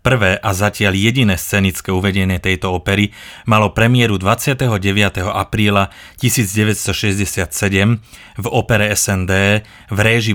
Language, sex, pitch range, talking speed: Slovak, male, 95-115 Hz, 105 wpm